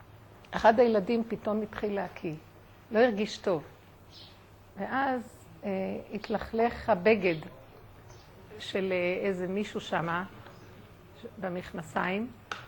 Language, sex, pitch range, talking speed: Hebrew, female, 160-240 Hz, 80 wpm